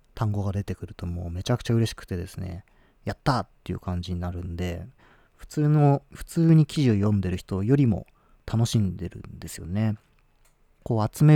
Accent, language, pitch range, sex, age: native, Japanese, 95-125 Hz, male, 40-59